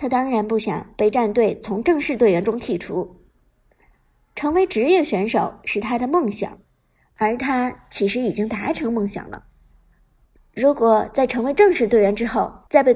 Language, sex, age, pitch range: Chinese, male, 50-69, 210-285 Hz